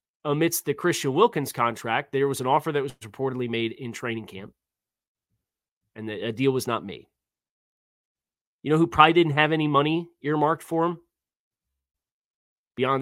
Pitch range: 115-150 Hz